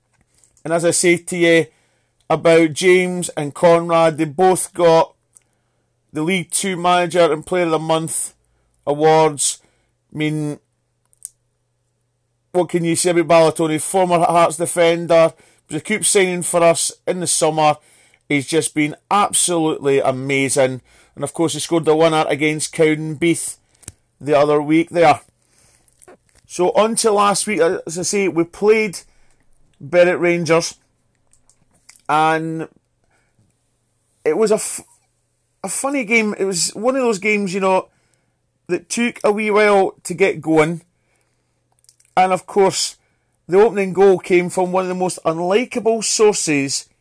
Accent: British